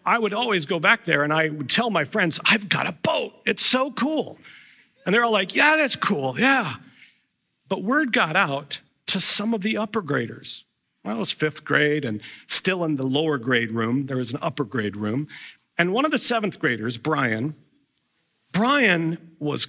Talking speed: 195 wpm